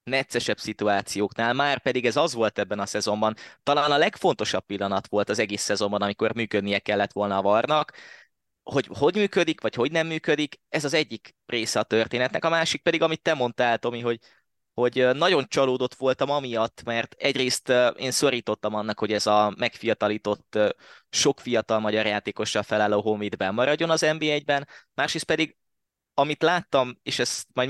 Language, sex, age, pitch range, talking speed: Hungarian, male, 20-39, 110-140 Hz, 165 wpm